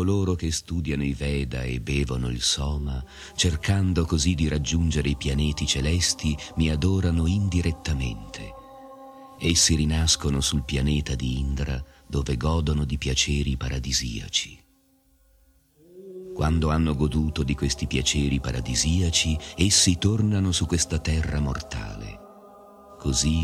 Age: 40-59